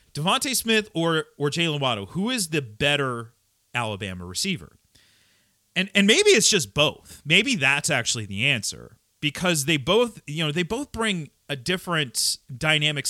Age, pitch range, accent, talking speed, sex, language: 30-49, 115-170 Hz, American, 155 wpm, male, English